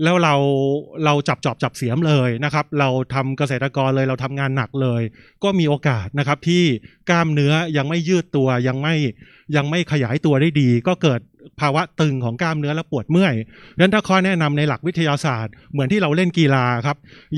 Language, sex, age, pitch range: Thai, male, 20-39, 135-170 Hz